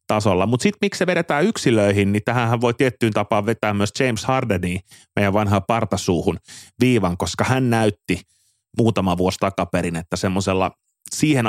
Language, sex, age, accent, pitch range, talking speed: Finnish, male, 30-49, native, 90-115 Hz, 145 wpm